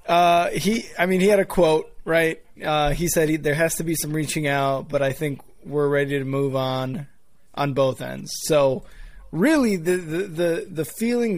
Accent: American